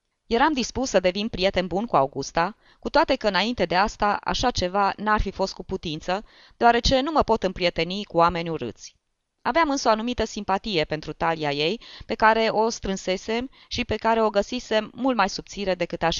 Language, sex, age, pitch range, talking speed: Romanian, female, 20-39, 165-225 Hz, 190 wpm